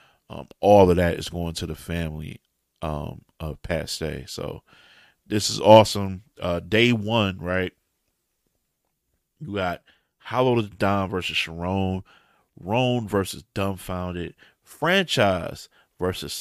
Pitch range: 90-110 Hz